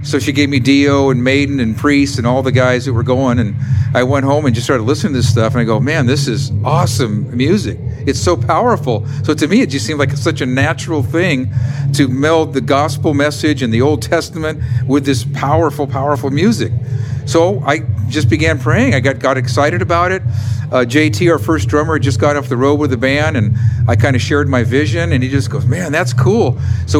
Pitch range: 120-140 Hz